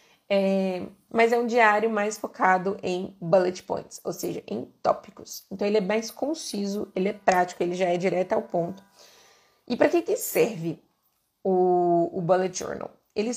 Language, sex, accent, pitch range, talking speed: Portuguese, female, Brazilian, 175-215 Hz, 165 wpm